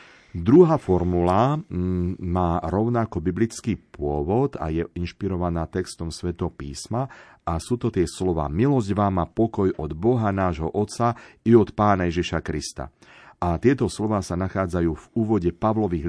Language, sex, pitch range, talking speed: Slovak, male, 85-105 Hz, 140 wpm